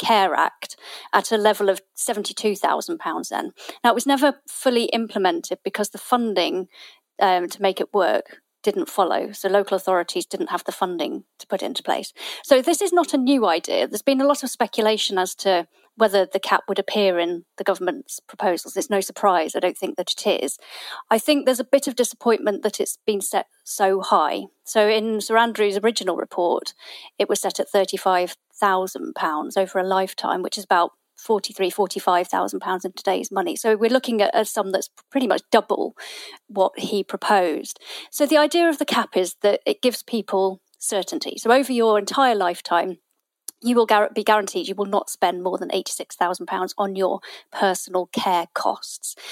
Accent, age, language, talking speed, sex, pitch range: British, 40-59, English, 180 wpm, female, 190-245 Hz